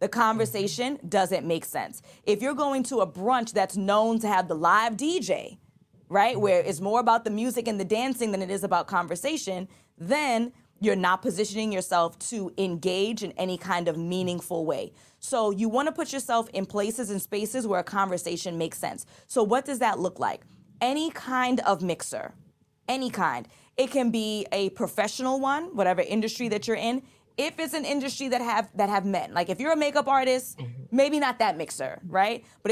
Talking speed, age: 195 wpm, 20-39